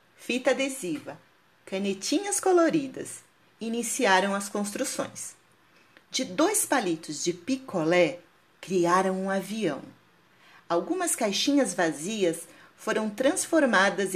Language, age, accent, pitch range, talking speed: Portuguese, 40-59, Brazilian, 175-270 Hz, 85 wpm